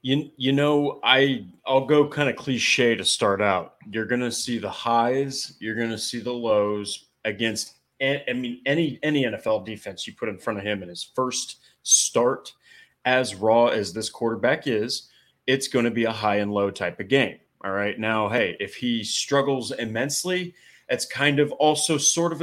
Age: 30-49